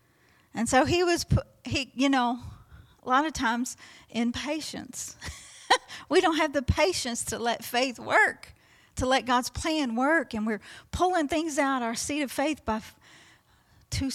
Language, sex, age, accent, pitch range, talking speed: English, female, 40-59, American, 220-260 Hz, 170 wpm